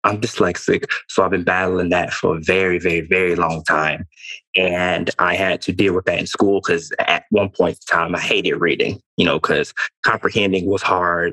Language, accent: English, American